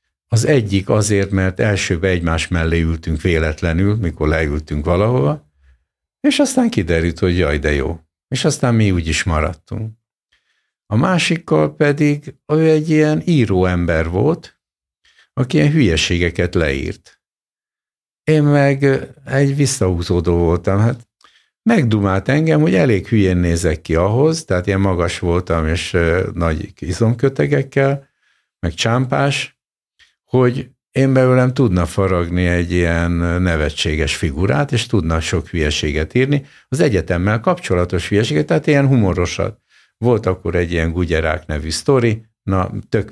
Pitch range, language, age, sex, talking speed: 85-130 Hz, Hungarian, 60-79, male, 125 wpm